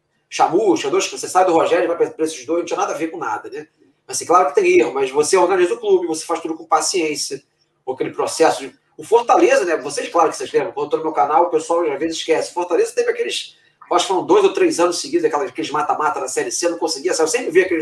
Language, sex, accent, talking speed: Portuguese, male, Brazilian, 265 wpm